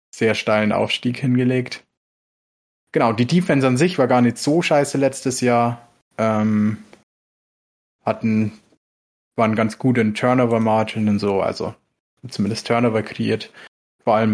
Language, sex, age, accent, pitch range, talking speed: German, male, 20-39, German, 105-120 Hz, 130 wpm